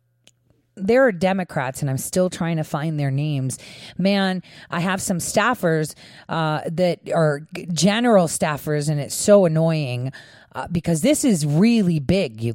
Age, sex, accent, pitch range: 30-49, female, American, 145-195 Hz